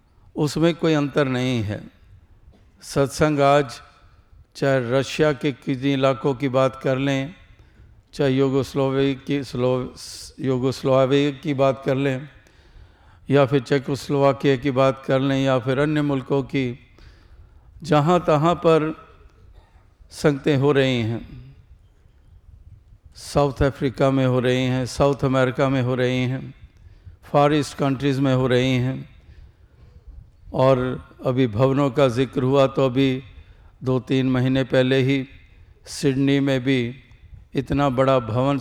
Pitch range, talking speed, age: 120-140 Hz, 125 wpm, 60-79